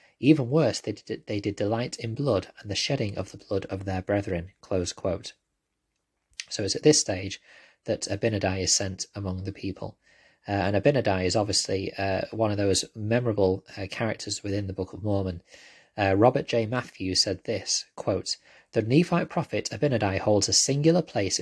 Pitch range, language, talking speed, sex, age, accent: 100-140 Hz, English, 175 wpm, male, 20-39, British